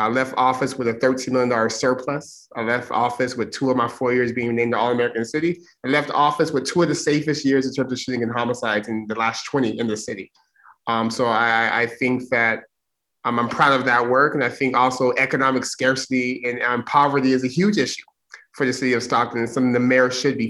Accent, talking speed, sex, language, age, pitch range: American, 235 wpm, male, English, 30-49, 120-145 Hz